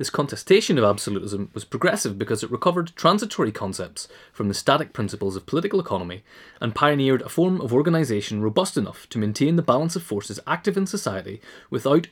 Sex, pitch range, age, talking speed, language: male, 105-160 Hz, 30-49, 180 wpm, English